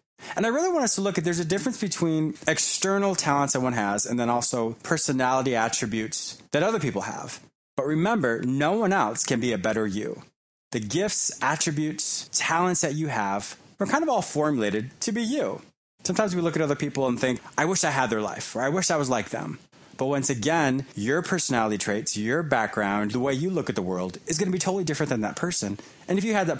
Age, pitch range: 20-39, 120-170 Hz